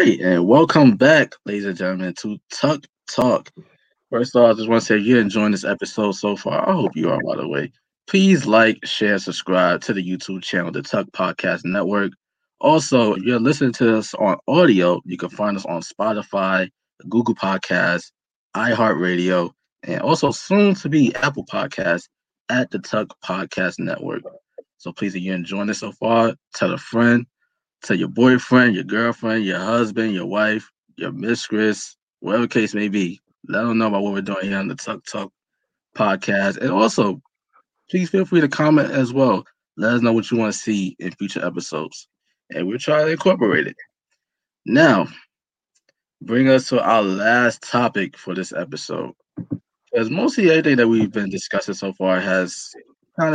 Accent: American